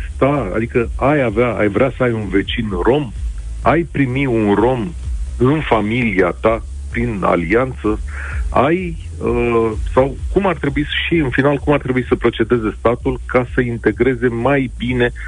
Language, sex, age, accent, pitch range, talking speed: Romanian, male, 40-59, native, 105-135 Hz, 160 wpm